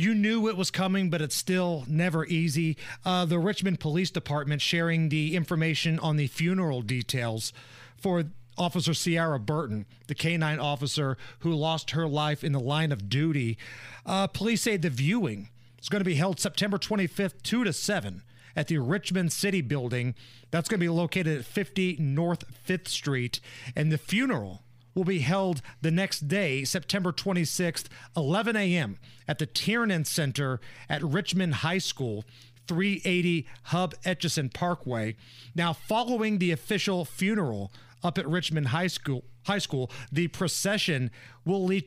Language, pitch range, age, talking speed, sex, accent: English, 130-180 Hz, 40-59, 155 wpm, male, American